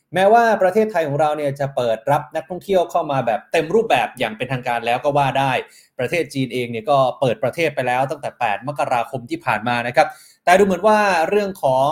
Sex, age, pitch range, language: male, 20-39, 135-180 Hz, Thai